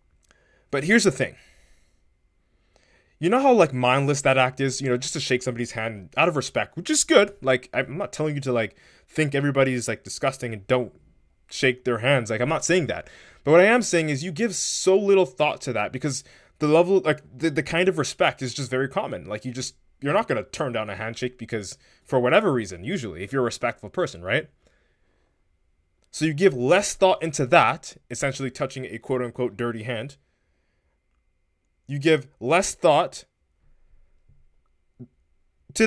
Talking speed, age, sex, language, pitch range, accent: 190 wpm, 20-39, male, English, 110-155 Hz, American